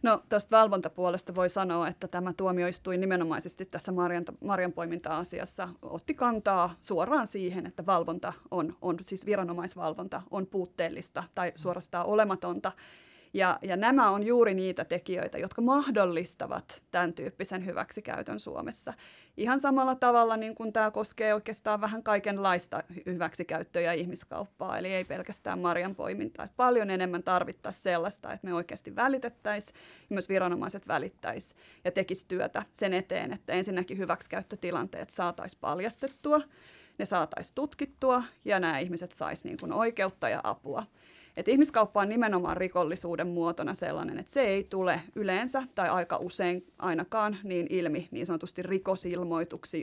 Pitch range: 175-215 Hz